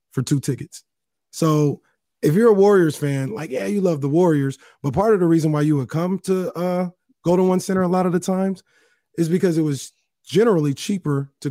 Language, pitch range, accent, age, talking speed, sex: English, 140-185 Hz, American, 30-49, 215 wpm, male